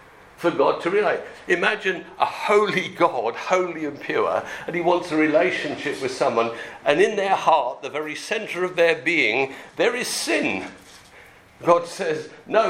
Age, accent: 50-69, British